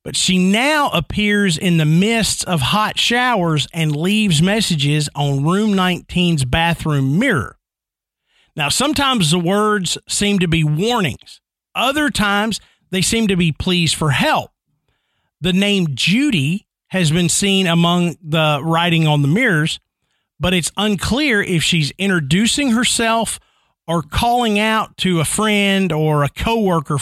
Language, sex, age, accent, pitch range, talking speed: English, male, 50-69, American, 155-215 Hz, 140 wpm